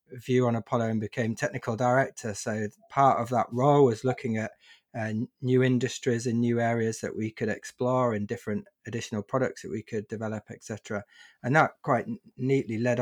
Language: English